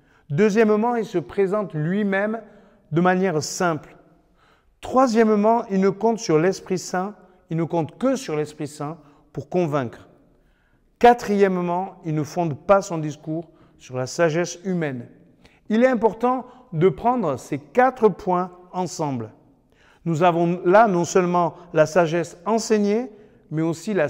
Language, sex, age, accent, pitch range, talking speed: French, male, 50-69, French, 155-215 Hz, 125 wpm